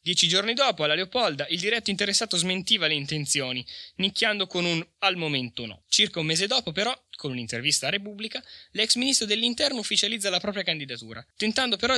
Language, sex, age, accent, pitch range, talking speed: Italian, male, 20-39, native, 135-190 Hz, 175 wpm